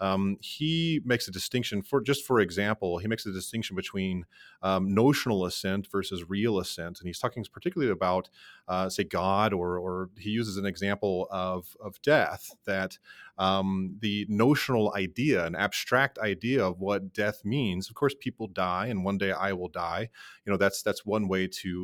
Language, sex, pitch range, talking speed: English, male, 95-115 Hz, 180 wpm